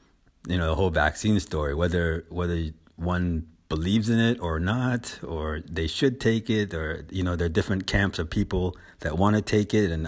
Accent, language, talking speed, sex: American, English, 200 wpm, male